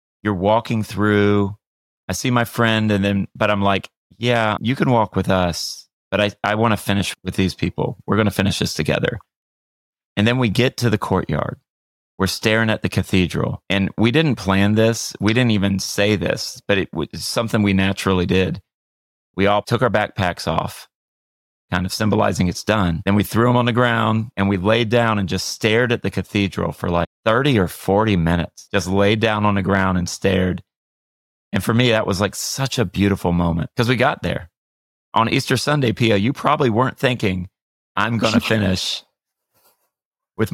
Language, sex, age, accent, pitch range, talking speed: English, male, 30-49, American, 95-115 Hz, 195 wpm